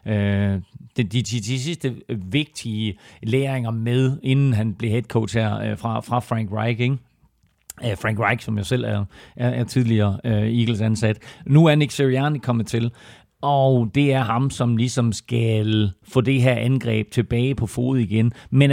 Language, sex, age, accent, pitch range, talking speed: Danish, male, 40-59, native, 110-130 Hz, 160 wpm